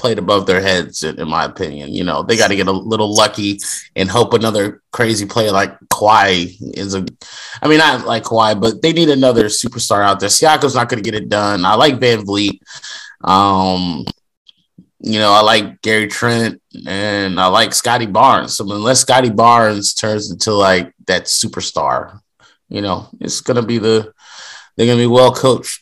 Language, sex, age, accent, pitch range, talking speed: English, male, 30-49, American, 100-130 Hz, 185 wpm